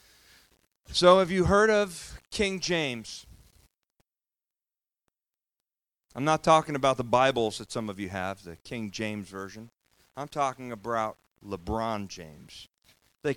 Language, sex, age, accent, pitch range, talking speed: English, male, 40-59, American, 115-160 Hz, 125 wpm